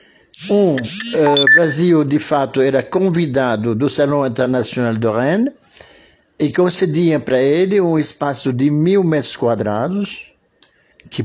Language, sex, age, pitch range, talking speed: Portuguese, male, 60-79, 130-170 Hz, 125 wpm